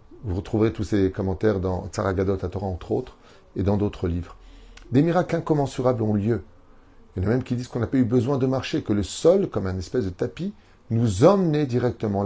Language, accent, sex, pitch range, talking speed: French, French, male, 95-120 Hz, 220 wpm